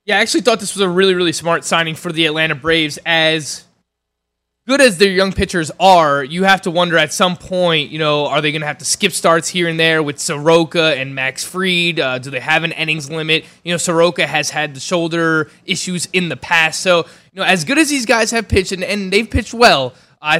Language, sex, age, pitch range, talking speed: English, male, 20-39, 150-185 Hz, 240 wpm